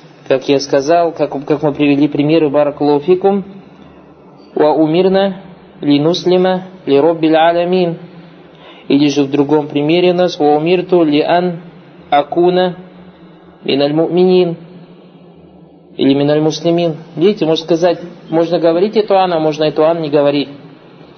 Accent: native